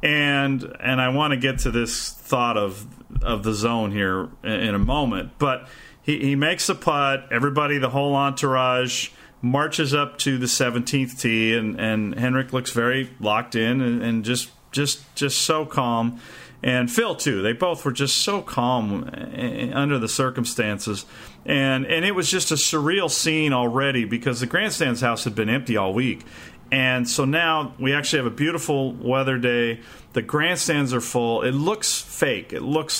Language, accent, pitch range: English, American, 120-145 Hz